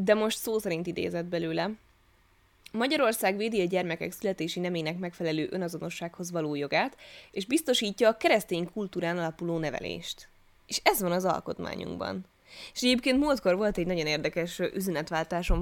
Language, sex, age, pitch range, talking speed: Hungarian, female, 10-29, 160-200 Hz, 140 wpm